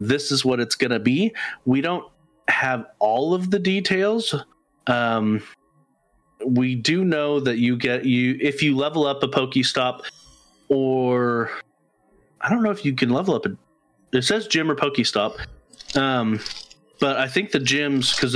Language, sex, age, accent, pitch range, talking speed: English, male, 30-49, American, 115-140 Hz, 165 wpm